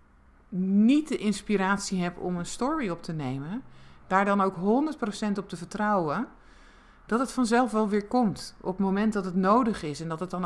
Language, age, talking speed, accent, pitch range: Dutch, 50-69, 195 wpm, Dutch, 165-205 Hz